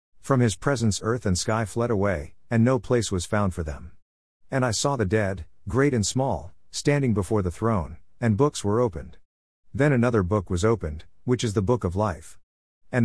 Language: English